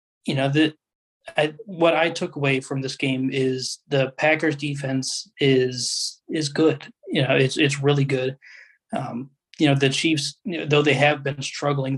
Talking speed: 180 wpm